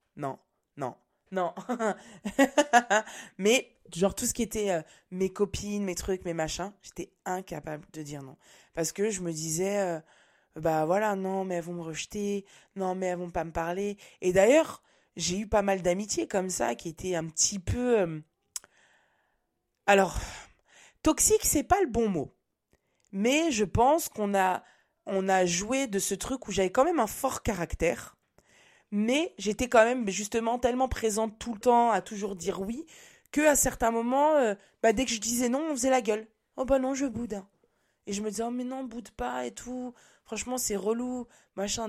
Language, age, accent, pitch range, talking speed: French, 20-39, French, 180-250 Hz, 190 wpm